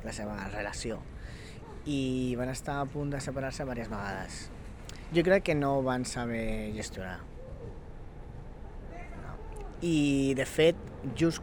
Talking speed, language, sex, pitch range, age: 130 wpm, Spanish, female, 100-145 Hz, 20-39